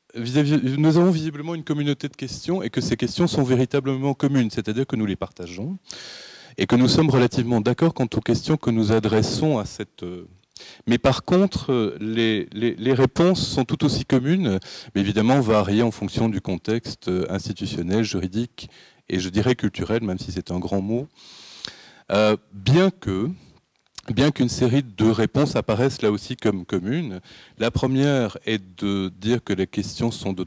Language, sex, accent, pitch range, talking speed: French, male, French, 105-135 Hz, 170 wpm